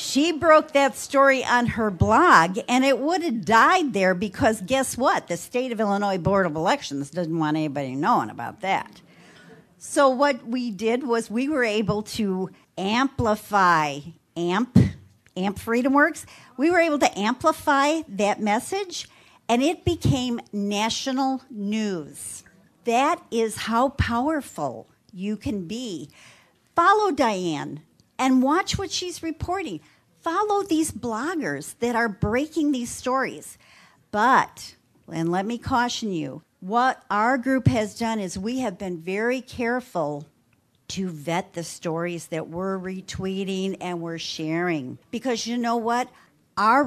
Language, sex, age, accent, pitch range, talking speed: English, female, 50-69, American, 185-265 Hz, 140 wpm